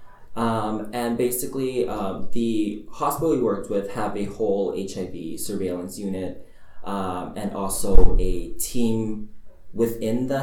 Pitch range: 95-115 Hz